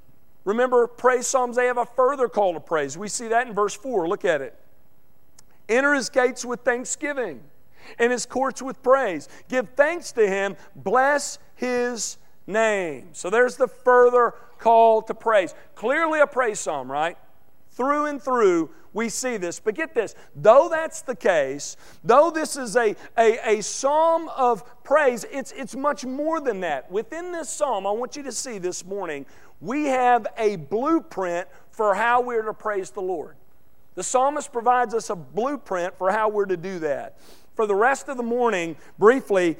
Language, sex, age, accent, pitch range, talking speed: English, male, 40-59, American, 195-260 Hz, 175 wpm